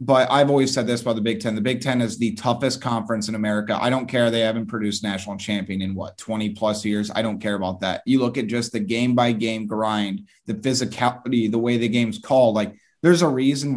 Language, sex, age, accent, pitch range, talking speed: English, male, 20-39, American, 110-135 Hz, 235 wpm